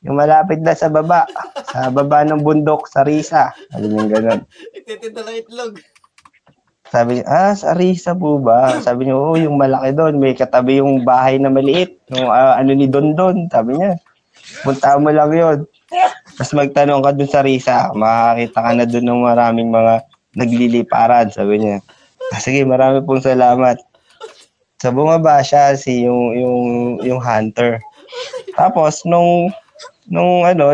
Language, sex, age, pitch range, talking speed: Filipino, male, 20-39, 125-170 Hz, 160 wpm